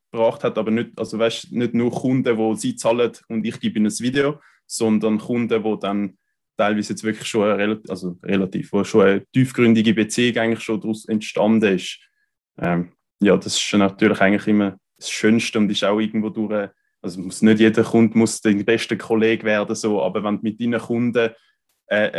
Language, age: German, 20-39